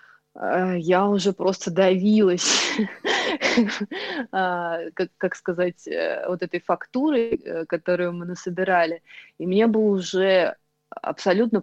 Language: Russian